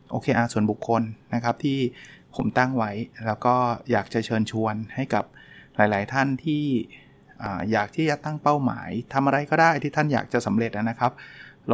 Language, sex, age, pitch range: Thai, male, 20-39, 115-135 Hz